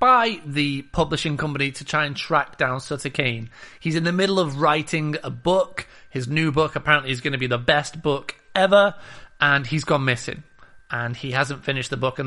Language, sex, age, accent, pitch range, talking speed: English, male, 30-49, British, 130-160 Hz, 205 wpm